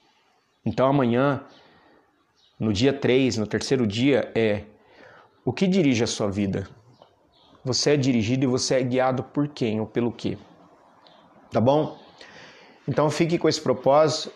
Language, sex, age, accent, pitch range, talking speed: Portuguese, male, 30-49, Brazilian, 115-150 Hz, 140 wpm